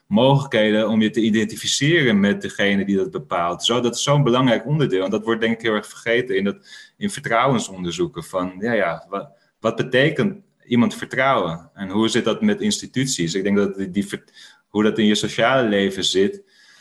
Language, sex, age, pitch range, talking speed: Dutch, male, 30-49, 95-130 Hz, 170 wpm